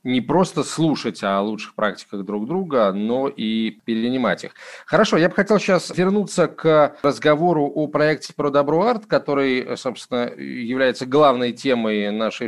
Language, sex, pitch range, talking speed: Russian, male, 110-150 Hz, 145 wpm